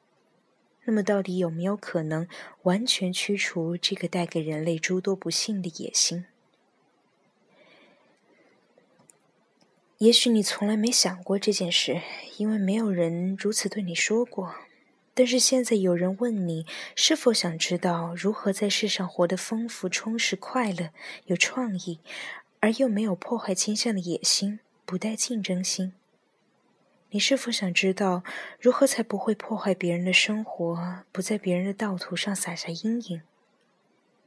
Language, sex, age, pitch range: Chinese, female, 20-39, 180-215 Hz